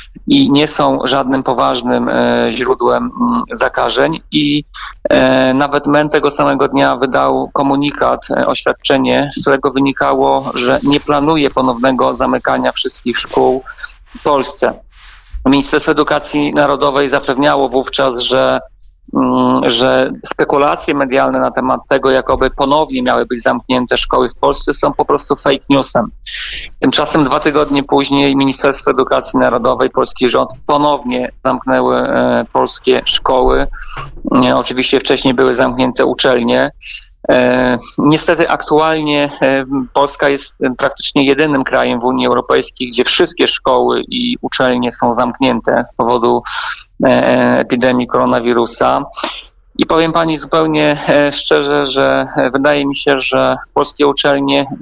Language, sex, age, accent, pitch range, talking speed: Polish, male, 40-59, native, 125-150 Hz, 115 wpm